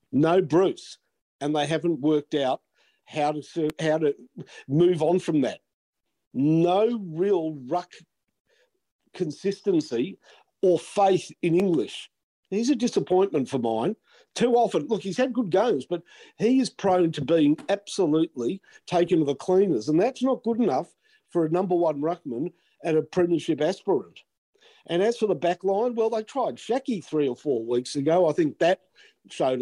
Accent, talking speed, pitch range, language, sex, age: Australian, 160 wpm, 150-205 Hz, English, male, 50-69